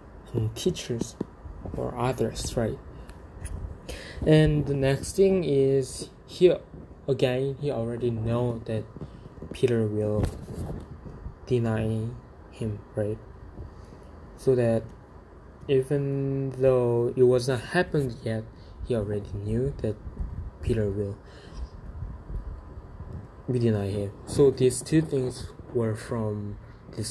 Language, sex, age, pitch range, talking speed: English, male, 20-39, 105-130 Hz, 100 wpm